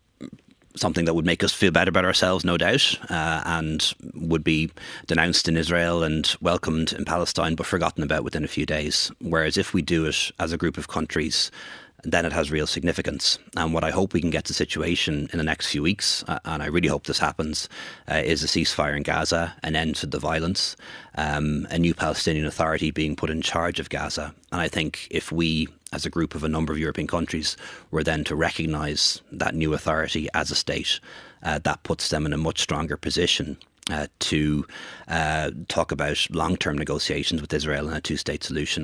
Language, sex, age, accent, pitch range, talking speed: English, male, 30-49, Irish, 75-85 Hz, 205 wpm